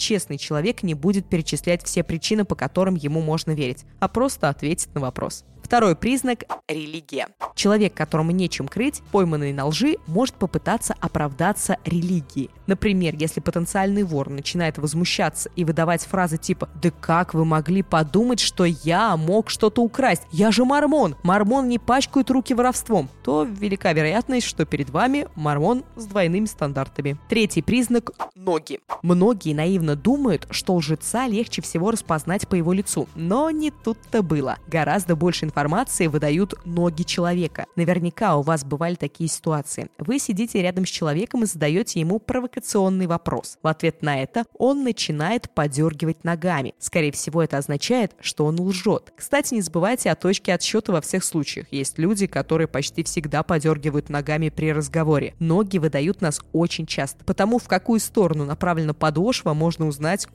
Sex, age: female, 20-39